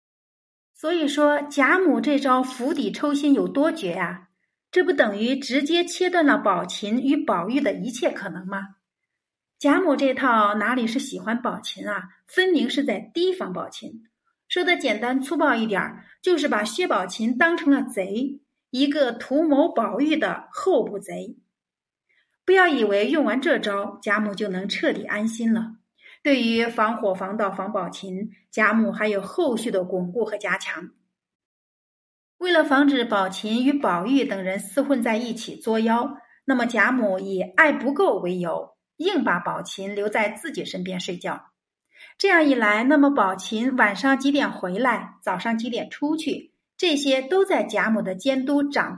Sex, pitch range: female, 205-295 Hz